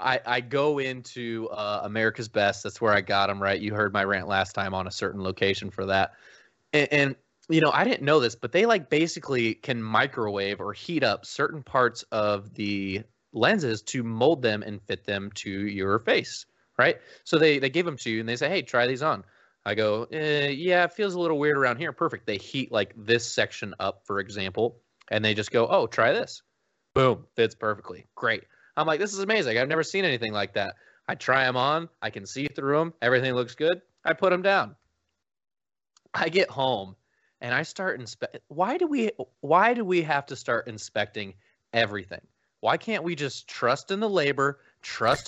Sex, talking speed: male, 205 wpm